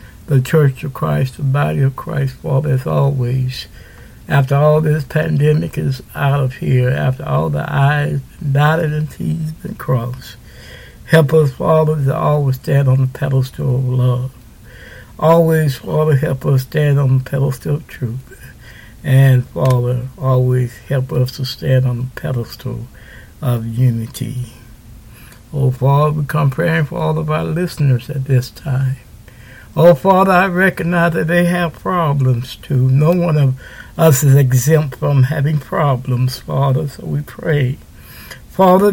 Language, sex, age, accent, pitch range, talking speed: English, male, 60-79, American, 130-160 Hz, 150 wpm